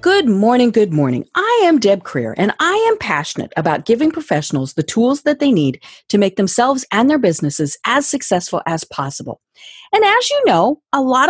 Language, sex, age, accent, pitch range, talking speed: English, female, 40-59, American, 195-305 Hz, 190 wpm